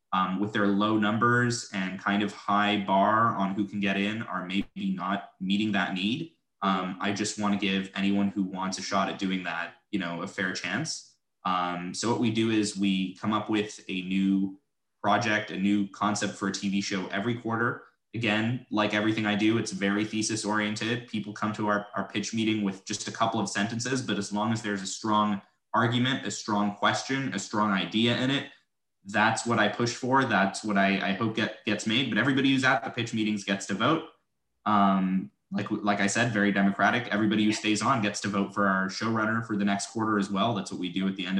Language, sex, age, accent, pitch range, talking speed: English, male, 20-39, American, 100-110 Hz, 220 wpm